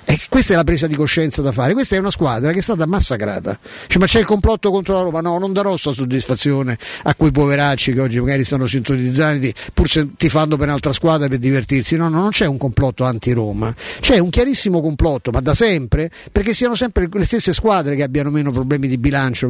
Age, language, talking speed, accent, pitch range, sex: 50-69, Italian, 225 wpm, native, 140-195 Hz, male